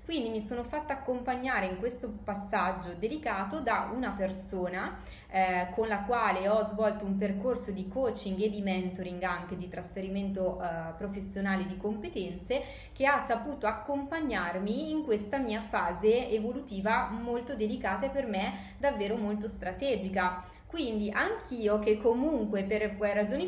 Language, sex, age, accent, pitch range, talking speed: Italian, female, 20-39, native, 195-250 Hz, 140 wpm